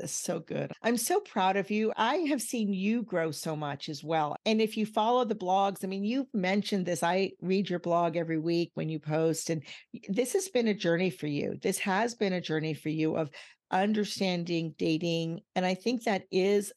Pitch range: 165-210 Hz